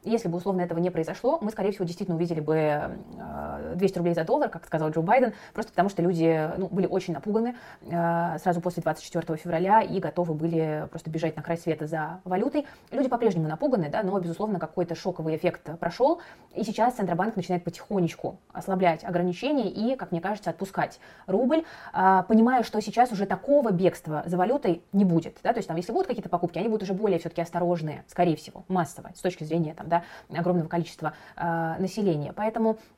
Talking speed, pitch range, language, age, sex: 185 wpm, 170-205 Hz, Russian, 20-39, female